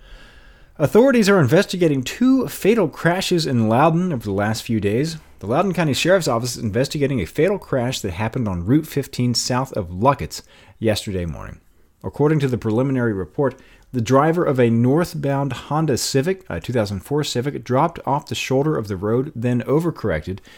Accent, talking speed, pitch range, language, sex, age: American, 165 wpm, 95-140 Hz, English, male, 40-59